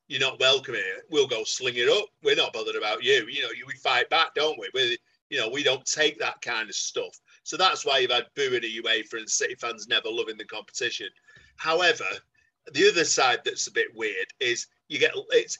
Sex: male